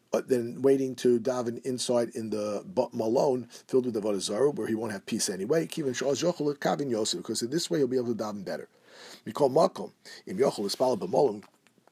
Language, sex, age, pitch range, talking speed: English, male, 50-69, 115-150 Hz, 165 wpm